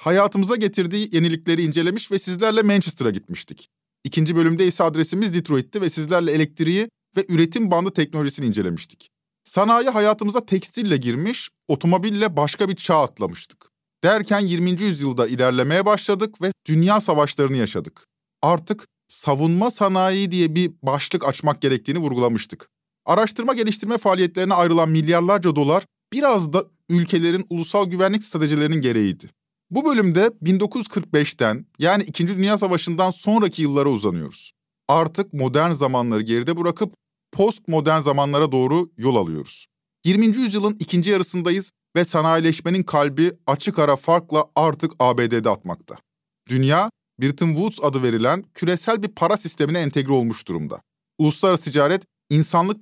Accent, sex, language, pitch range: native, male, Turkish, 150-195 Hz